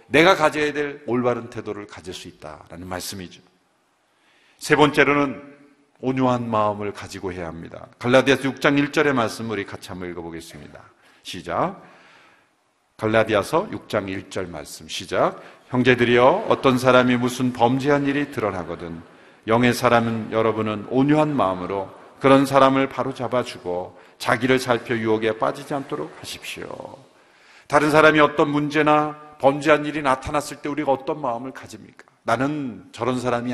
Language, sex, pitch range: Korean, male, 110-160 Hz